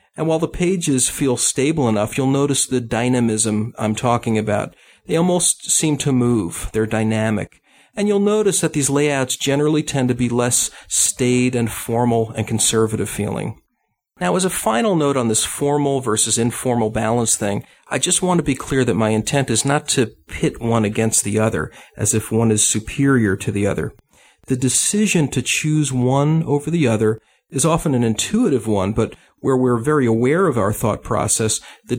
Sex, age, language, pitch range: male, 40-59, English, 110-140 Hz